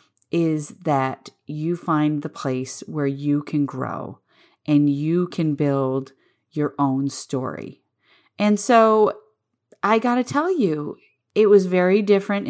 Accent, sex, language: American, female, English